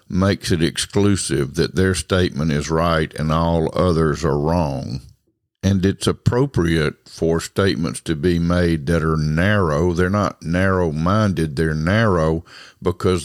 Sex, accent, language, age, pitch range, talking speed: male, American, English, 50-69, 85-100 Hz, 135 wpm